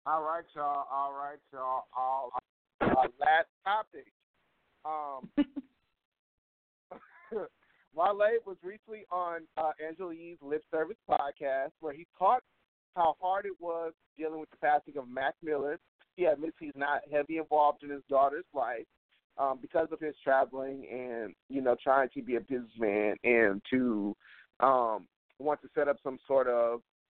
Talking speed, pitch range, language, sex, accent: 155 wpm, 135-170 Hz, English, male, American